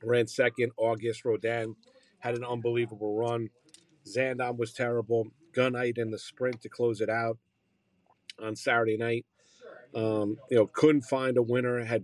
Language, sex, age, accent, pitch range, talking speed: English, male, 50-69, American, 110-130 Hz, 150 wpm